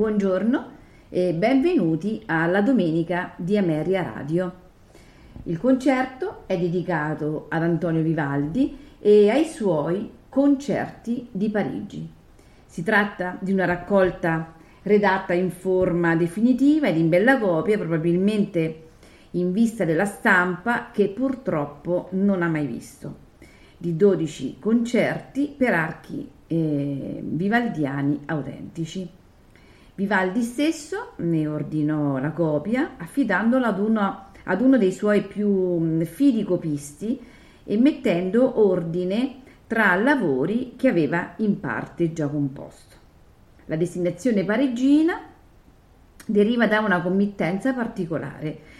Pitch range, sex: 165-230 Hz, female